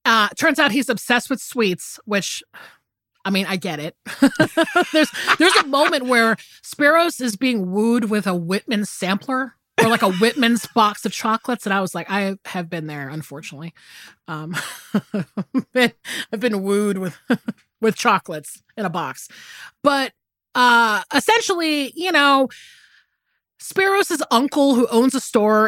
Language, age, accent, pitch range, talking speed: English, 30-49, American, 180-245 Hz, 145 wpm